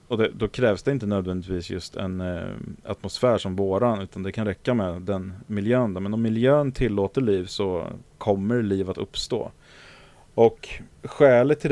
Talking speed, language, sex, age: 175 wpm, English, male, 30-49